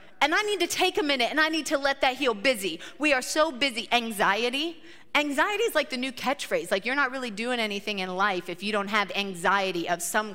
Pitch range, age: 220-280 Hz, 30-49